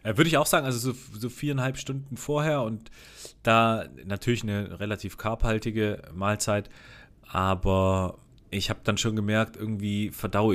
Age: 30-49